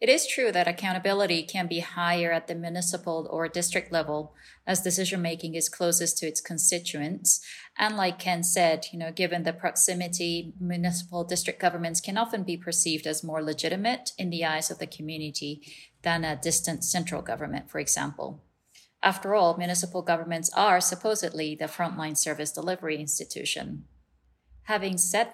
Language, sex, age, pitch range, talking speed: English, female, 30-49, 165-190 Hz, 160 wpm